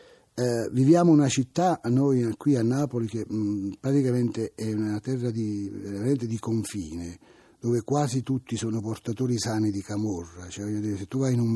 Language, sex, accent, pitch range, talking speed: Italian, male, native, 105-125 Hz, 165 wpm